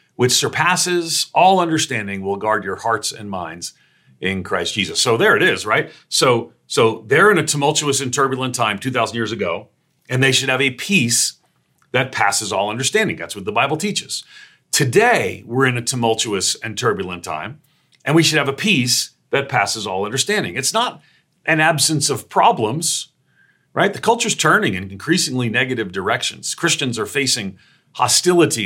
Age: 40-59